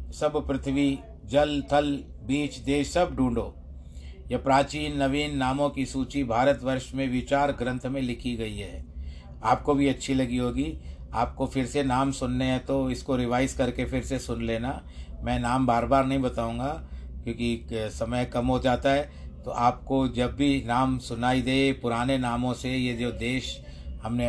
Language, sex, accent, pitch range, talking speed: Hindi, male, native, 110-135 Hz, 165 wpm